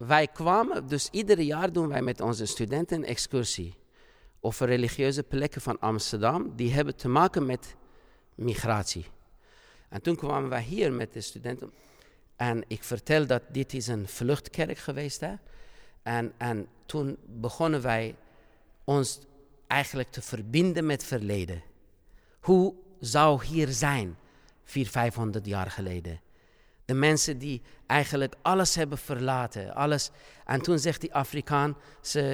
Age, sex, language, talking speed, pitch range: 50-69, male, Dutch, 135 wpm, 120-150 Hz